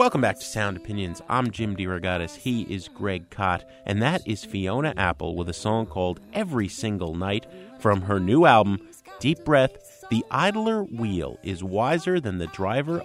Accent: American